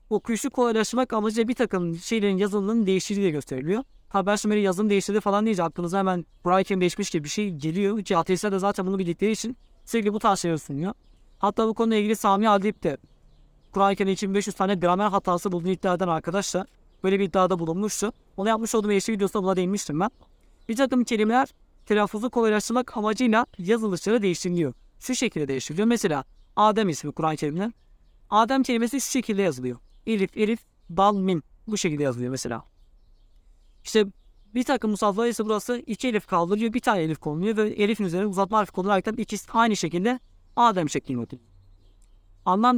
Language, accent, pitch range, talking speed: Turkish, native, 175-220 Hz, 170 wpm